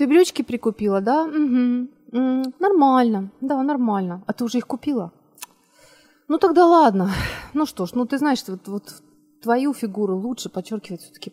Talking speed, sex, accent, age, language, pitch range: 155 wpm, female, native, 30-49, Ukrainian, 205-280 Hz